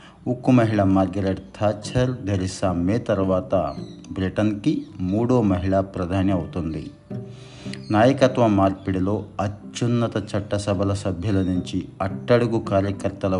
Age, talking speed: 50-69, 90 wpm